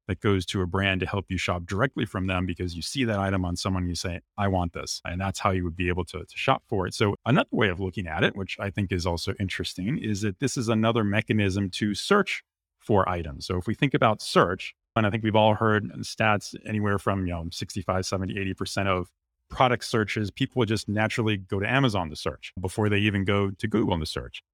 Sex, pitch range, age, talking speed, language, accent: male, 95-115 Hz, 30-49, 240 wpm, English, American